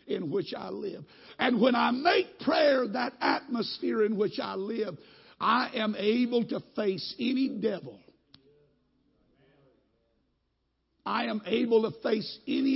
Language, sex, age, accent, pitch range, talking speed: English, male, 60-79, American, 205-270 Hz, 130 wpm